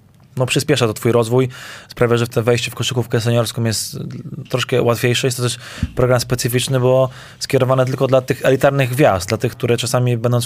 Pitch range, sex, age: 115-130 Hz, male, 20-39